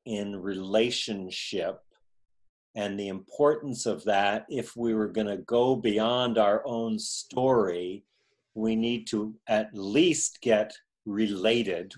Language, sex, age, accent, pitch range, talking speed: English, male, 50-69, American, 105-130 Hz, 115 wpm